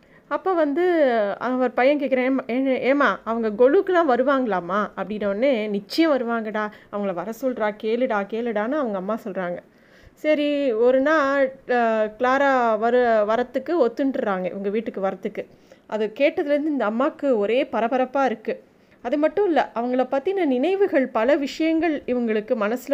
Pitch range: 225-280 Hz